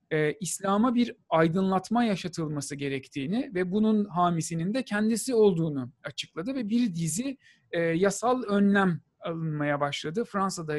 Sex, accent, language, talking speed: male, native, Turkish, 110 wpm